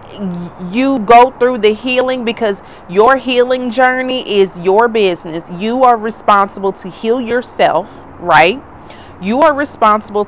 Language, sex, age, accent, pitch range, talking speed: English, female, 30-49, American, 190-250 Hz, 130 wpm